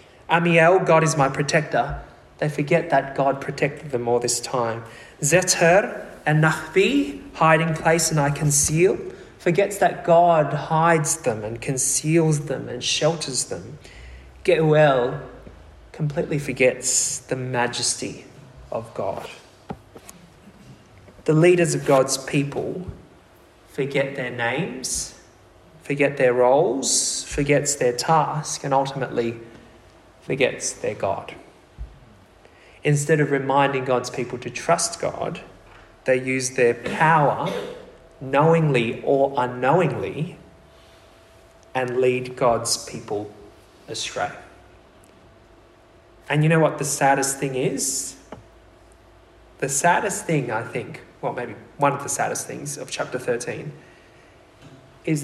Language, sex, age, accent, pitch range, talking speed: English, male, 20-39, Australian, 125-160 Hz, 110 wpm